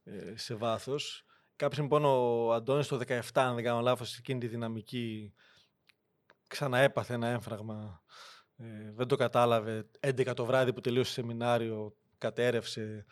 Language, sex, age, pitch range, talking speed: Greek, male, 20-39, 120-145 Hz, 145 wpm